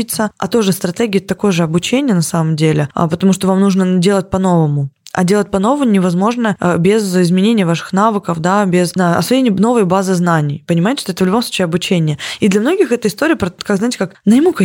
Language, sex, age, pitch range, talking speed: Russian, female, 20-39, 180-215 Hz, 195 wpm